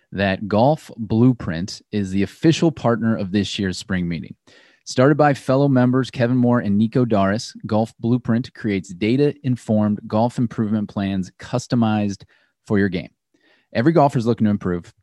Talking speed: 150 wpm